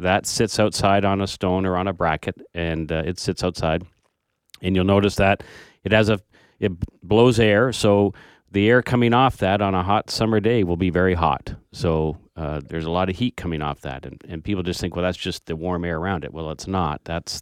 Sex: male